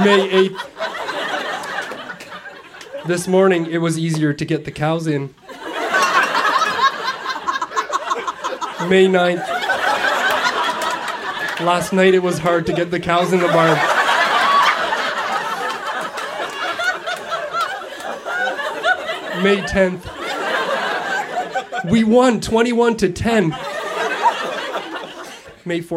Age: 20-39